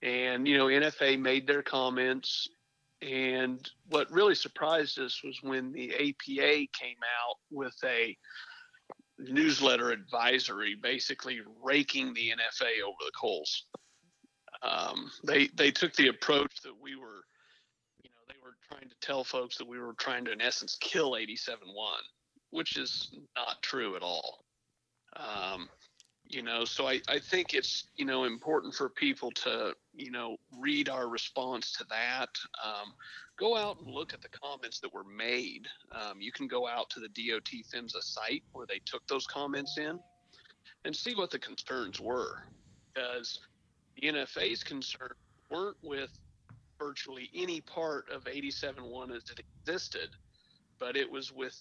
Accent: American